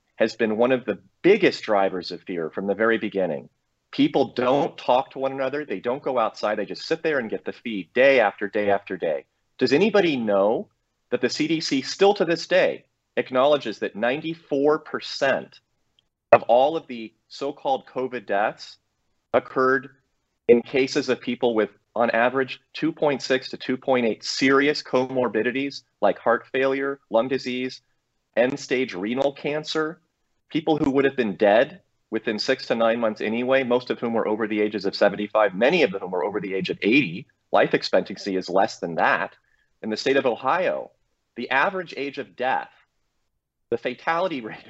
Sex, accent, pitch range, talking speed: male, American, 115-145 Hz, 170 wpm